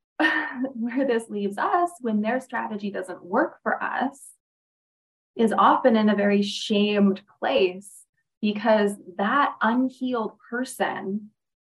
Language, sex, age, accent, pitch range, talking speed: English, female, 20-39, American, 195-235 Hz, 115 wpm